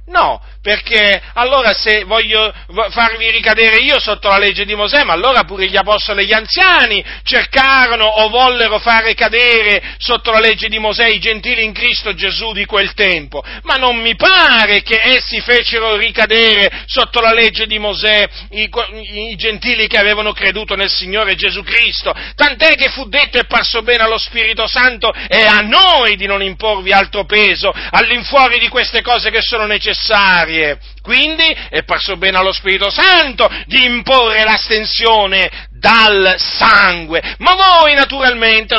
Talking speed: 160 wpm